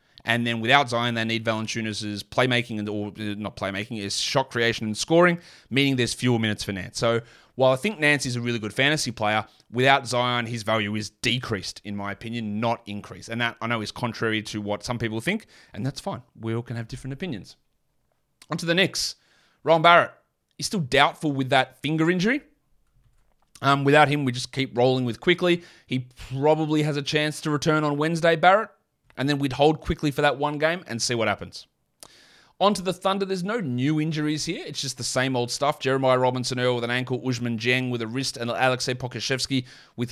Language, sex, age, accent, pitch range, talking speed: English, male, 30-49, Australian, 115-140 Hz, 210 wpm